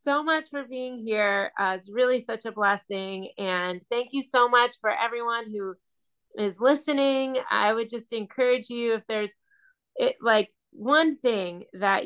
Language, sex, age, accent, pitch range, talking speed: English, female, 30-49, American, 190-235 Hz, 160 wpm